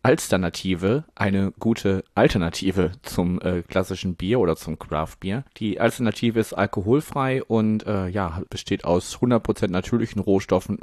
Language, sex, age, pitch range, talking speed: German, male, 30-49, 90-105 Hz, 135 wpm